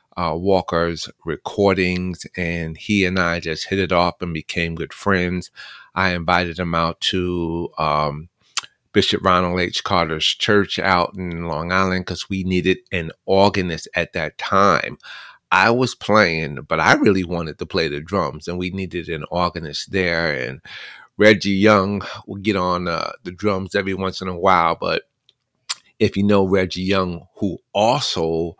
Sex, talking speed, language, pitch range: male, 160 wpm, English, 85-100 Hz